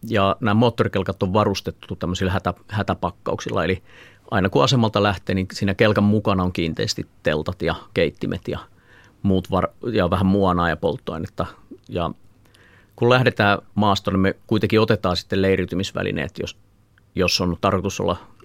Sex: male